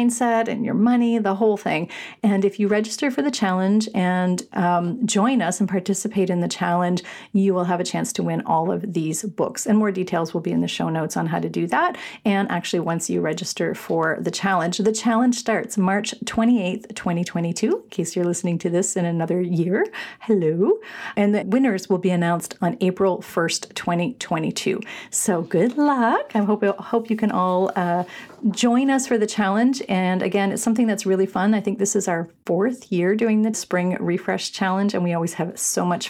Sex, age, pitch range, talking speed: female, 40-59, 180-225 Hz, 205 wpm